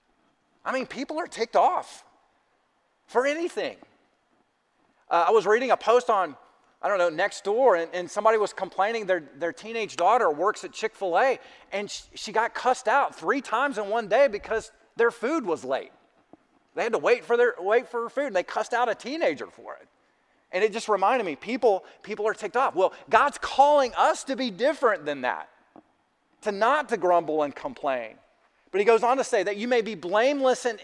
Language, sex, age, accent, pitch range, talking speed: English, male, 30-49, American, 180-235 Hz, 195 wpm